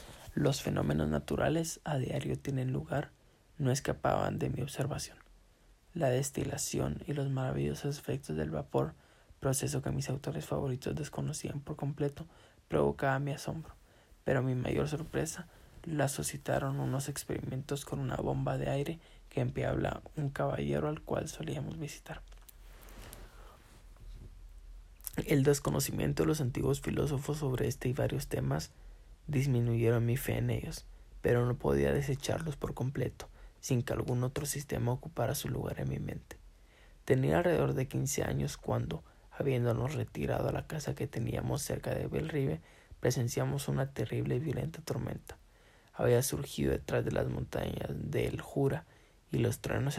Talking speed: 145 wpm